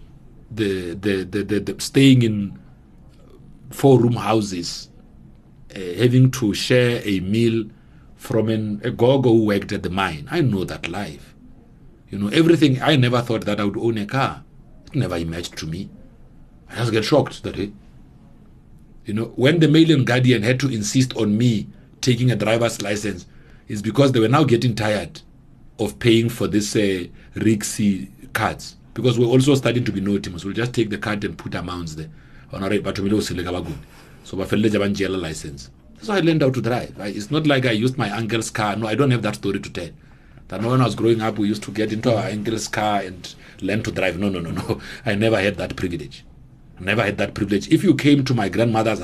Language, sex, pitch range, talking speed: English, male, 100-120 Hz, 195 wpm